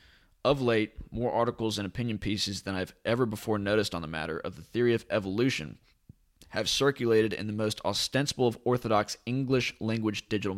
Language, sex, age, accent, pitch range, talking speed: English, male, 20-39, American, 90-120 Hz, 170 wpm